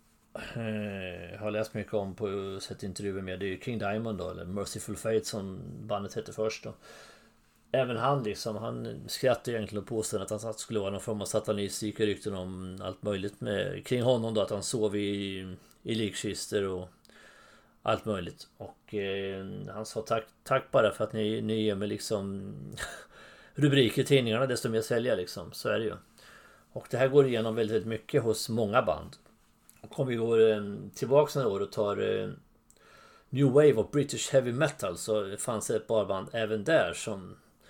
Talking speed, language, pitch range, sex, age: 185 wpm, English, 100-115 Hz, male, 30-49